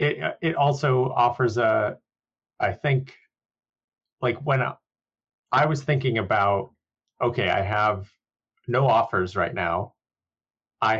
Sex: male